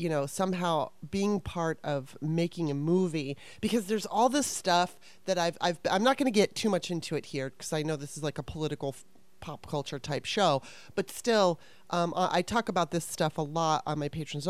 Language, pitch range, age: English, 155-195 Hz, 30-49